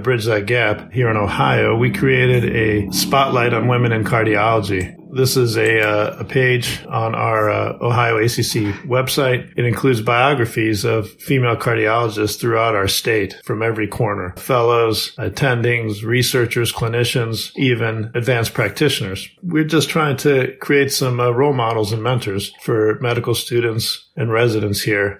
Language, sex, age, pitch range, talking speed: English, male, 50-69, 110-125 Hz, 150 wpm